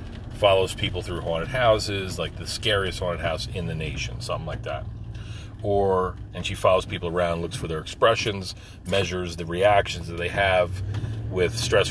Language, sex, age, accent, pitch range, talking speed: English, male, 40-59, American, 95-110 Hz, 170 wpm